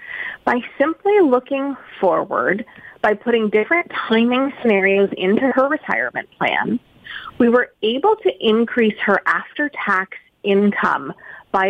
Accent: American